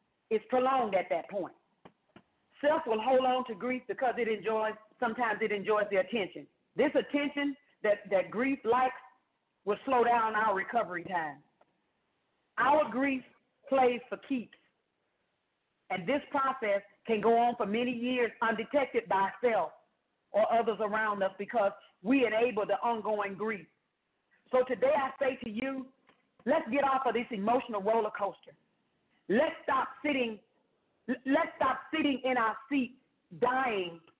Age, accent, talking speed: 40-59, American, 145 wpm